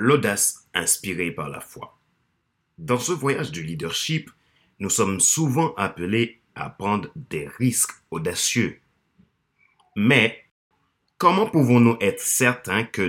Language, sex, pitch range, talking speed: French, male, 95-135 Hz, 115 wpm